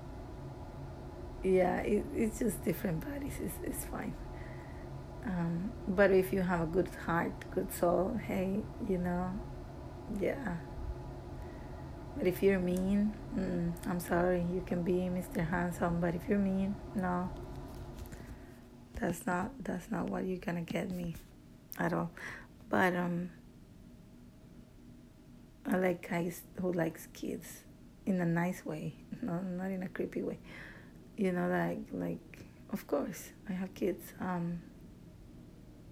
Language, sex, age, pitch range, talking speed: English, female, 30-49, 175-200 Hz, 130 wpm